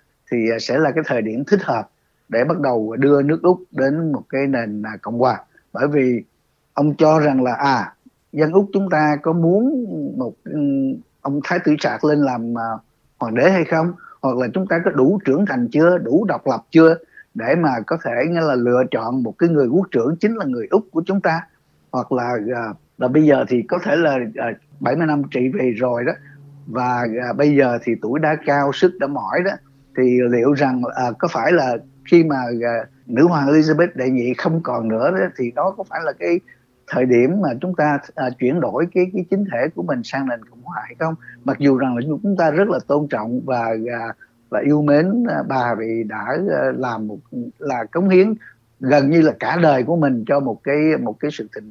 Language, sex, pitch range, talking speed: Vietnamese, male, 125-170 Hz, 215 wpm